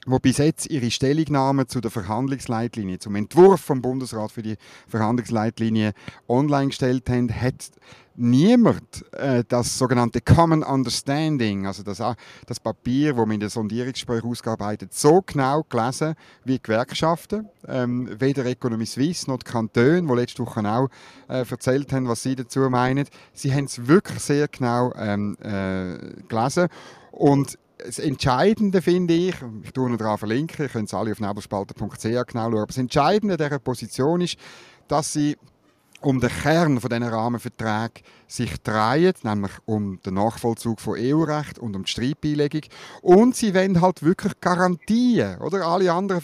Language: German